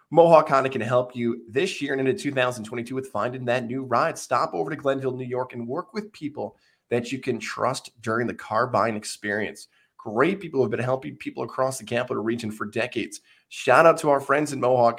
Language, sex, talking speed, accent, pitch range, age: English, male, 210 wpm, American, 110-140 Hz, 20-39